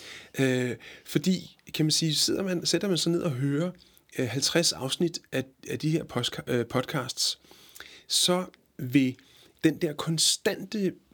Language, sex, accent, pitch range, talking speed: Danish, male, native, 130-165 Hz, 120 wpm